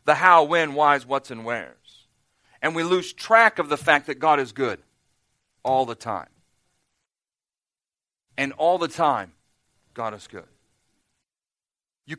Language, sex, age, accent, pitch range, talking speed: English, male, 40-59, American, 140-180 Hz, 145 wpm